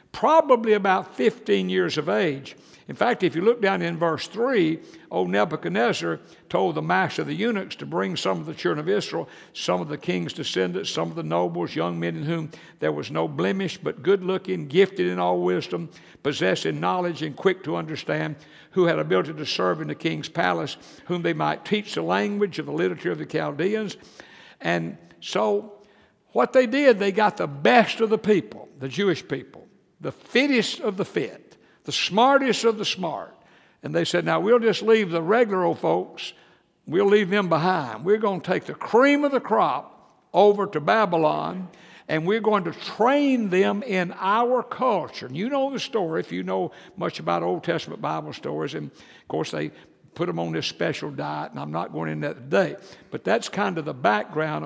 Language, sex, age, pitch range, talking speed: English, male, 60-79, 150-210 Hz, 195 wpm